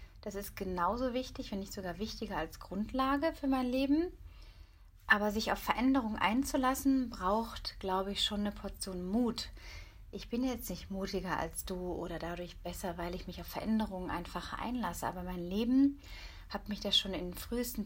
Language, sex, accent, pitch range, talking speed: German, female, German, 180-220 Hz, 175 wpm